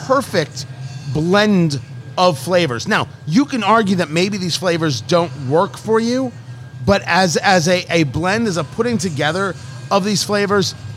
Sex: male